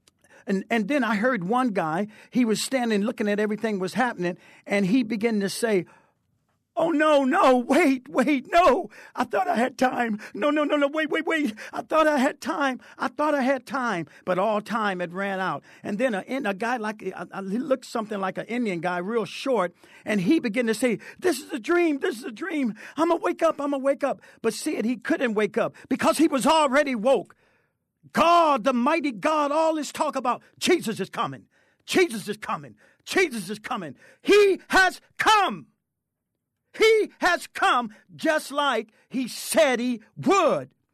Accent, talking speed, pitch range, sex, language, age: American, 195 wpm, 225-315 Hz, male, English, 50-69